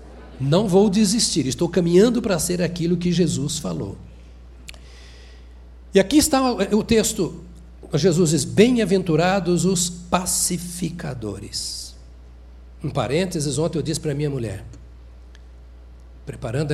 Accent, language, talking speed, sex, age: Brazilian, Portuguese, 110 wpm, male, 60-79